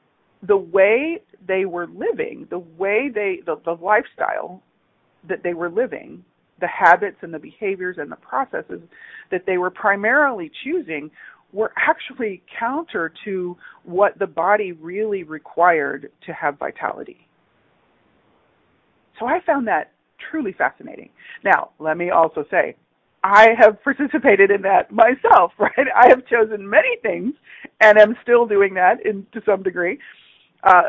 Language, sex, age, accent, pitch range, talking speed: English, female, 40-59, American, 190-280 Hz, 140 wpm